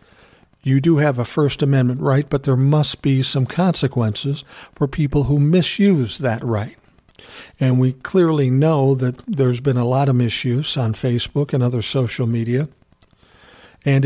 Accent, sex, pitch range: American, male, 125-150 Hz